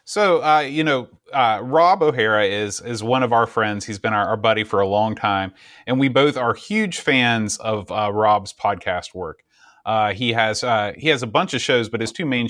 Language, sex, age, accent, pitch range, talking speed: English, male, 30-49, American, 110-135 Hz, 225 wpm